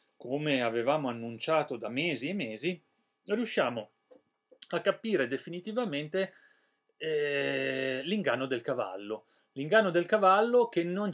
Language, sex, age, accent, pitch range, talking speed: Italian, male, 40-59, native, 125-190 Hz, 110 wpm